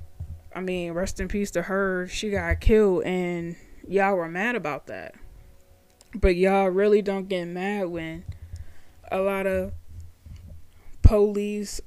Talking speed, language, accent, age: 135 wpm, English, American, 20-39